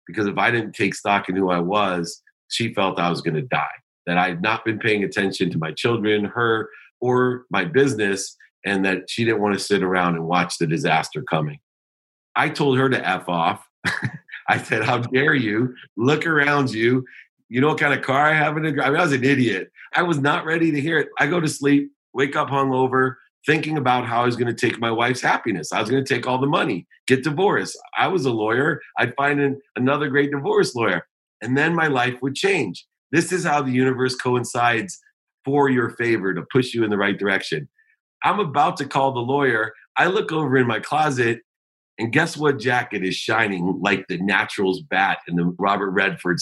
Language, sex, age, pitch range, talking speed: English, male, 40-59, 105-140 Hz, 215 wpm